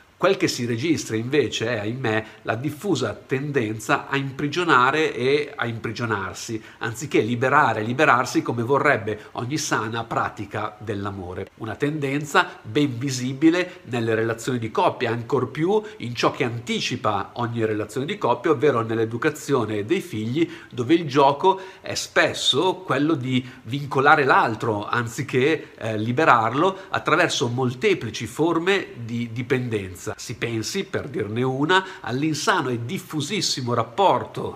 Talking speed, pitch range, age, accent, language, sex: 125 wpm, 115-155 Hz, 50-69, native, Italian, male